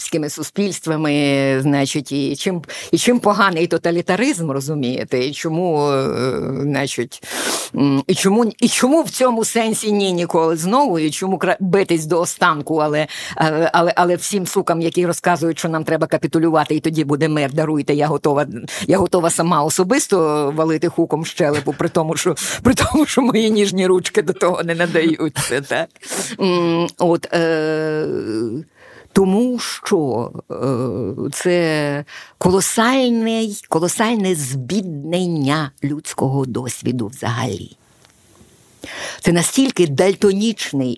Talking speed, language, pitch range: 115 wpm, Ukrainian, 145-190 Hz